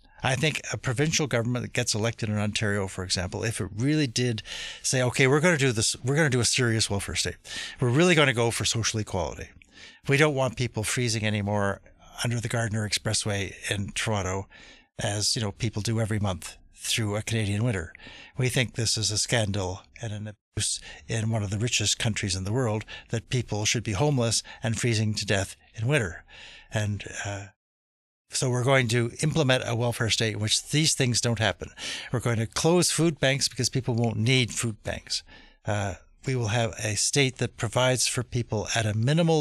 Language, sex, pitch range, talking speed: English, male, 105-125 Hz, 200 wpm